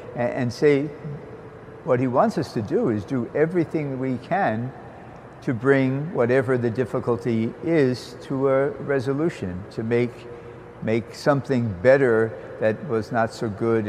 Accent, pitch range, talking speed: American, 110-130 Hz, 140 wpm